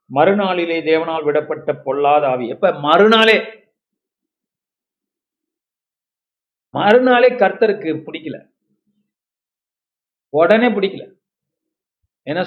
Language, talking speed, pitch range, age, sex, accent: Tamil, 60 wpm, 150-240 Hz, 50-69, male, native